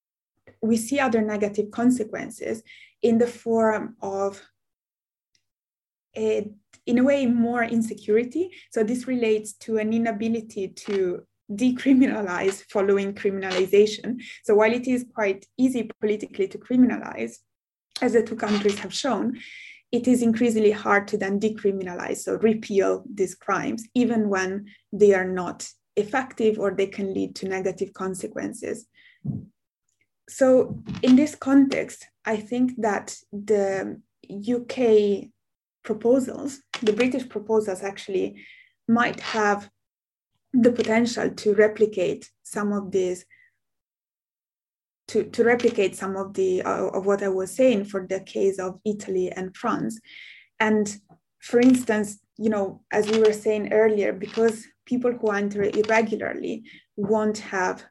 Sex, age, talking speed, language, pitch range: female, 20-39, 125 wpm, English, 200-240 Hz